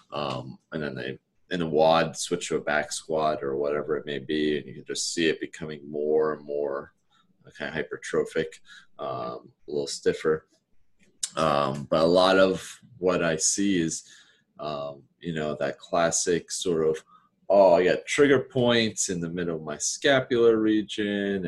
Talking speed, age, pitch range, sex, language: 175 wpm, 30-49, 75-95 Hz, male, English